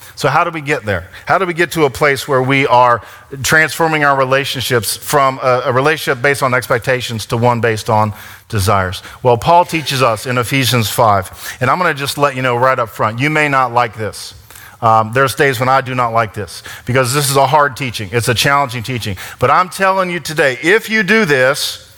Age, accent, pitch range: 40-59, American, 115-150 Hz